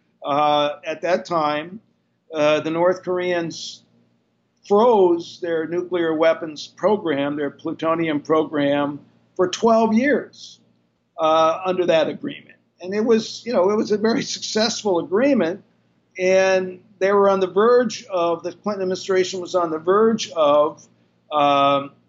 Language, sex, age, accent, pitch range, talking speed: English, male, 50-69, American, 145-190 Hz, 135 wpm